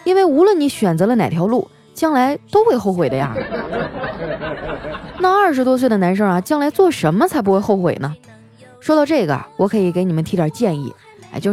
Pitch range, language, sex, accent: 175-265 Hz, Chinese, female, native